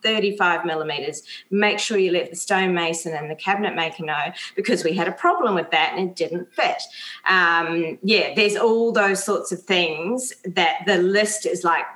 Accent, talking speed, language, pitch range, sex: Australian, 185 wpm, English, 170-220 Hz, female